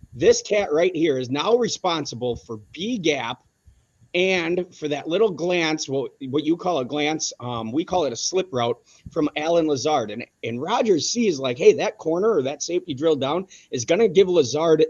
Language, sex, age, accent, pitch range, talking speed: English, male, 30-49, American, 140-190 Hz, 195 wpm